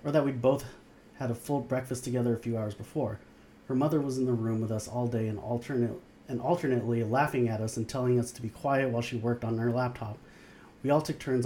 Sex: male